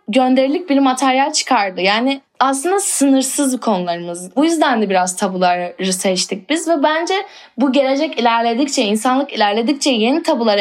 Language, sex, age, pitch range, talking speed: Turkish, female, 10-29, 215-290 Hz, 135 wpm